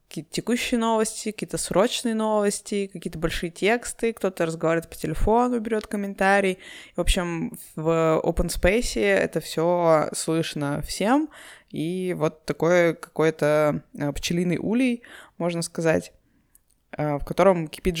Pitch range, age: 160-210 Hz, 20-39